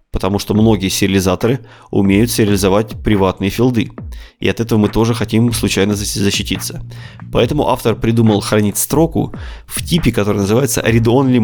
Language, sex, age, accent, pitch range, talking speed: Russian, male, 20-39, native, 100-115 Hz, 135 wpm